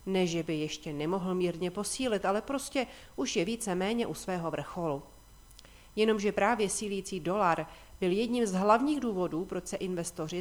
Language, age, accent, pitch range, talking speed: Czech, 40-59, native, 165-230 Hz, 155 wpm